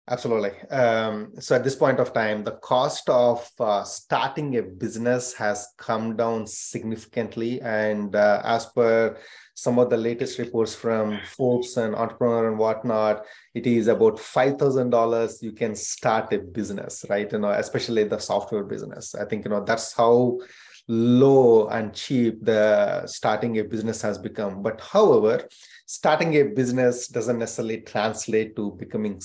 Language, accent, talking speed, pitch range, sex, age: English, Indian, 160 wpm, 110-125 Hz, male, 30-49